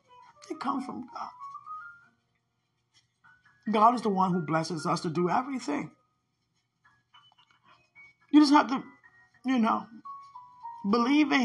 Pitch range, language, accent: 230-385 Hz, English, American